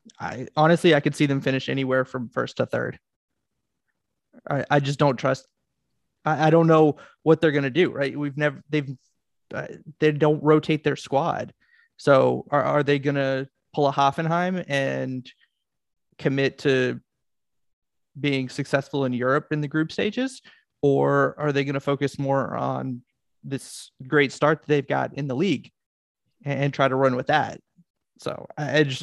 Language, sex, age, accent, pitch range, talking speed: English, male, 30-49, American, 135-150 Hz, 170 wpm